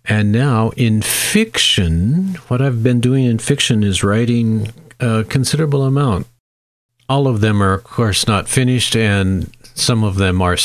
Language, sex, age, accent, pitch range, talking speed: English, male, 50-69, American, 90-120 Hz, 160 wpm